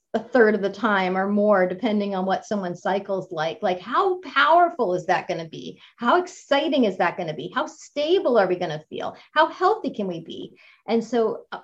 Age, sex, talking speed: 30-49, female, 220 wpm